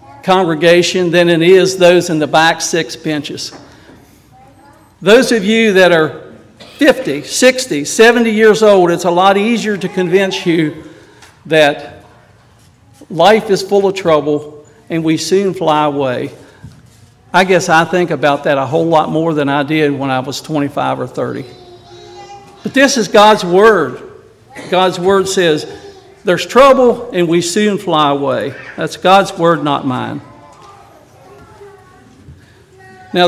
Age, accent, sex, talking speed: 60-79, American, male, 140 wpm